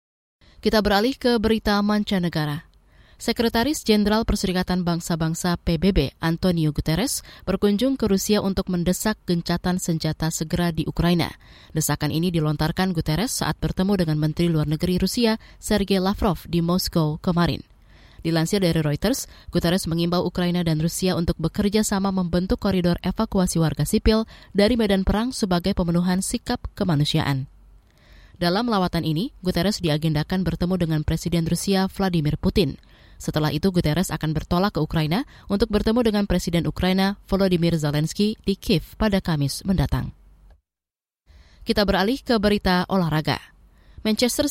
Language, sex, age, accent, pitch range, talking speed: Indonesian, female, 20-39, native, 160-205 Hz, 130 wpm